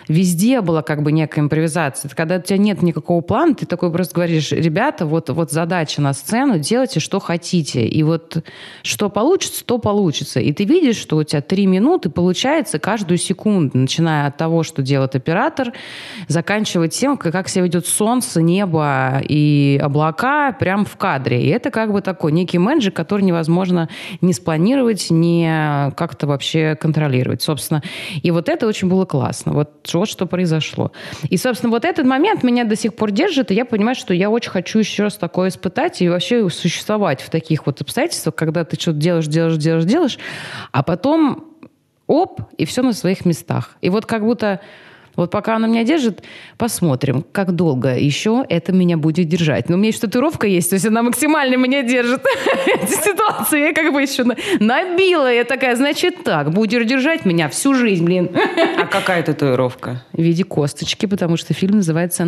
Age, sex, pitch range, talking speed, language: 20-39, female, 160-230 Hz, 180 wpm, Russian